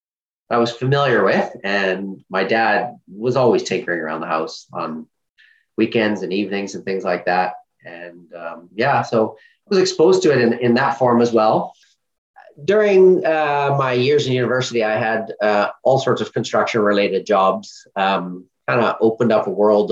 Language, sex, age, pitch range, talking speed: English, male, 30-49, 105-130 Hz, 170 wpm